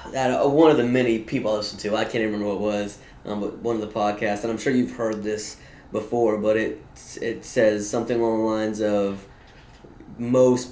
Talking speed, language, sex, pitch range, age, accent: 220 wpm, English, male, 110-130 Hz, 20-39, American